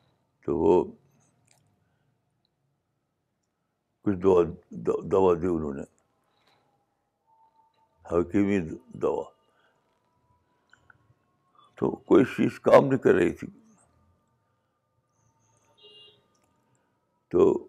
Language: Urdu